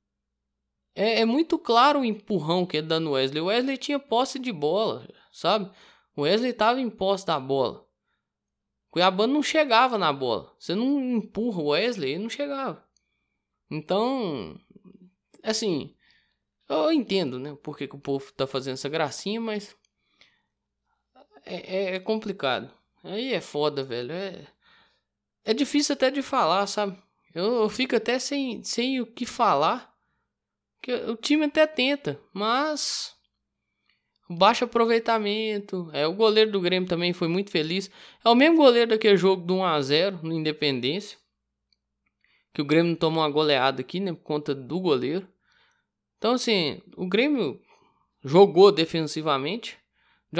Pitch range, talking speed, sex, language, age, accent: 145-230 Hz, 140 wpm, male, Portuguese, 10-29, Brazilian